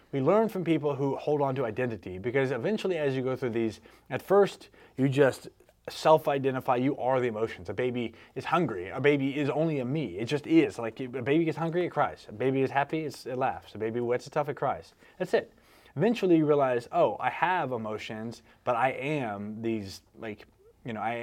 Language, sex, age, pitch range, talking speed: English, male, 20-39, 110-145 Hz, 210 wpm